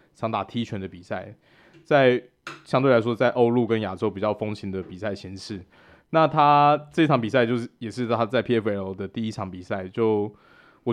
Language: Chinese